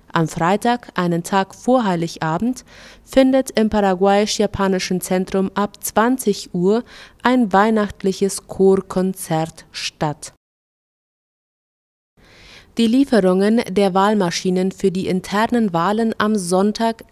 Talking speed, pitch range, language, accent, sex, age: 95 wpm, 180-220 Hz, German, German, female, 30-49